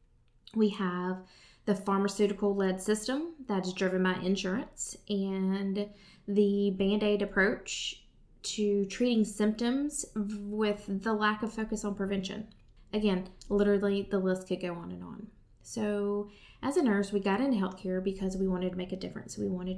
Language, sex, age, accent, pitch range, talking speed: English, female, 20-39, American, 185-210 Hz, 160 wpm